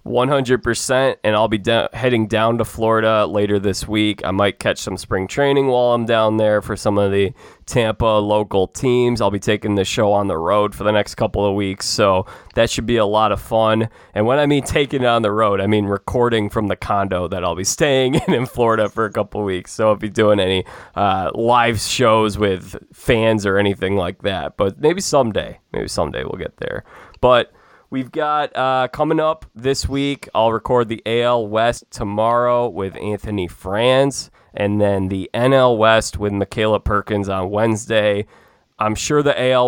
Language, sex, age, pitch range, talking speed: English, male, 20-39, 100-120 Hz, 200 wpm